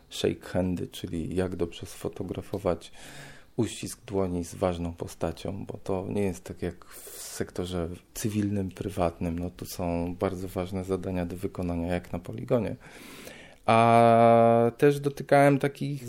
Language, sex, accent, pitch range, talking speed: Polish, male, native, 90-115 Hz, 135 wpm